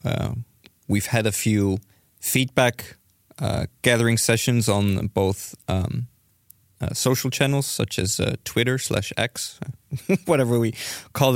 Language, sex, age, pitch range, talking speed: English, male, 20-39, 100-120 Hz, 125 wpm